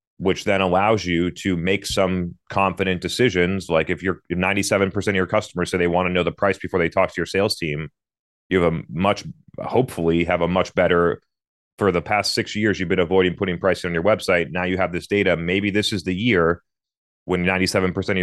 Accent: American